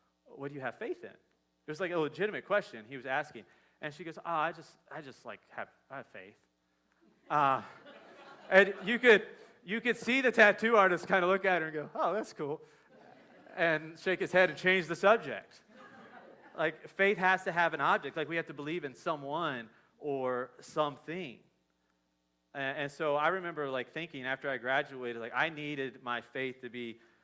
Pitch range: 110-150 Hz